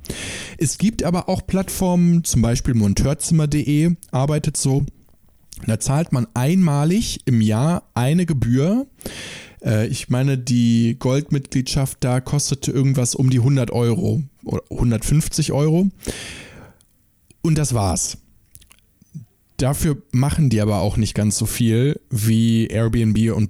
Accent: German